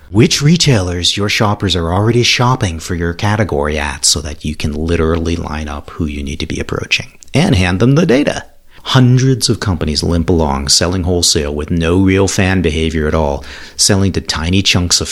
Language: English